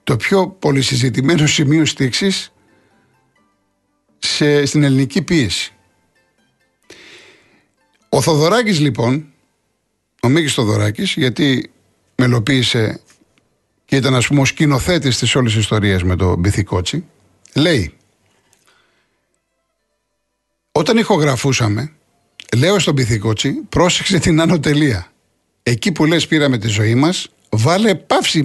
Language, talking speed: Greek, 95 wpm